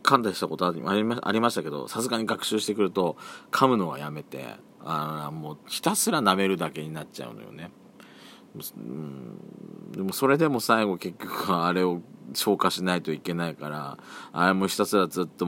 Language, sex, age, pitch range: Japanese, male, 40-59, 80-130 Hz